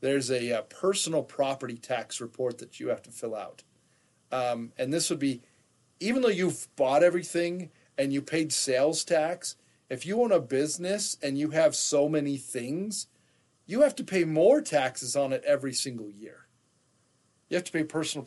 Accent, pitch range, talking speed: American, 125-160 Hz, 180 wpm